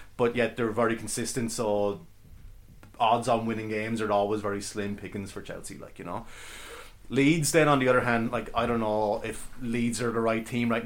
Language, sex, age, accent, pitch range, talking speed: English, male, 30-49, Irish, 105-120 Hz, 205 wpm